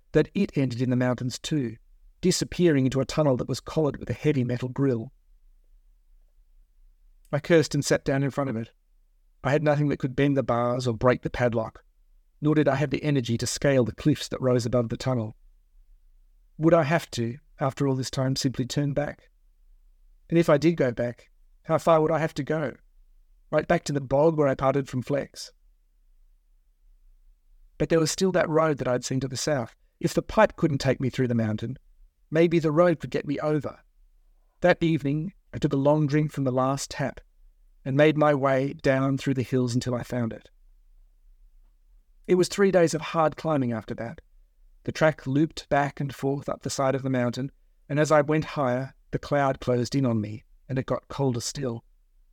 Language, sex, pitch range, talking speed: English, male, 120-150 Hz, 205 wpm